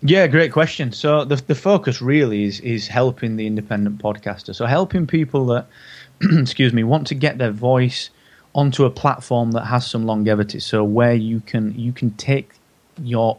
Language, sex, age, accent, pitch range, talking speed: English, male, 20-39, British, 105-130 Hz, 180 wpm